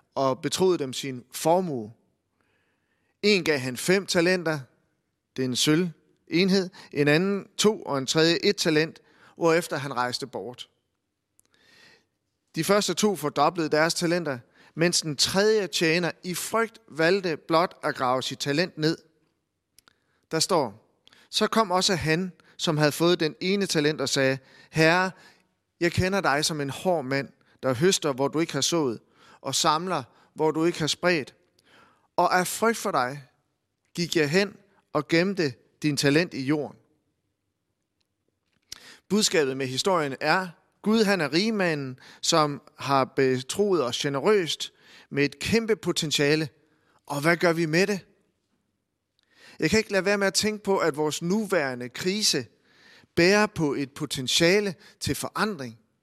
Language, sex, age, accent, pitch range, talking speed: Danish, male, 30-49, native, 140-185 Hz, 150 wpm